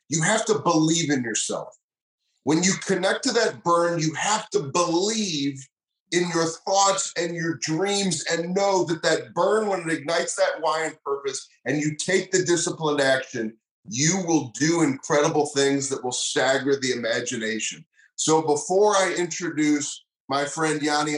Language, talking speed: English, 160 wpm